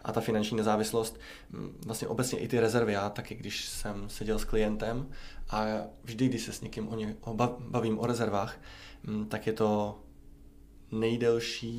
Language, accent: Czech, native